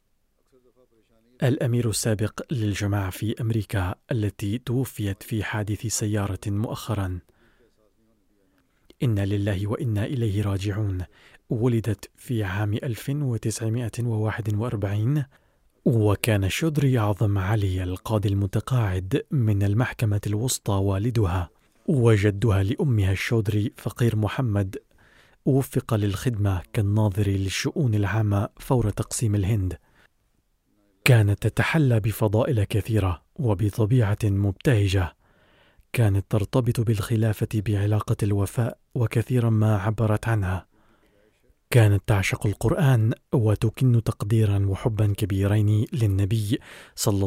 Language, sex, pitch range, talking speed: Arabic, male, 100-120 Hz, 85 wpm